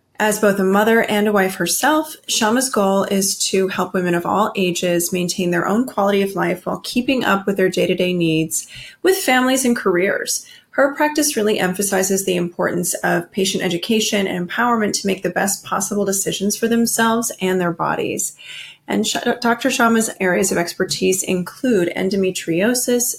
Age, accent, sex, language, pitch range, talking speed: 30-49, American, female, English, 190-240 Hz, 165 wpm